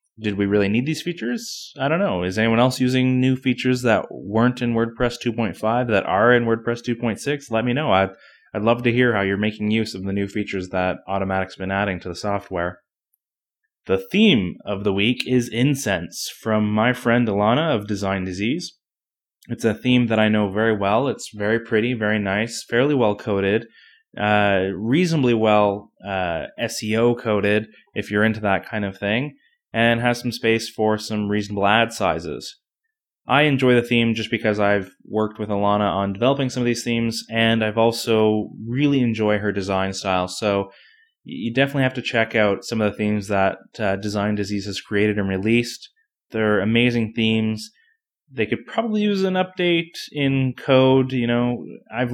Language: English